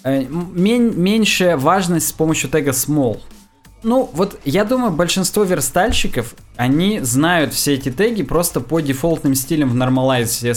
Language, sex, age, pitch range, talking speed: Russian, male, 20-39, 125-170 Hz, 135 wpm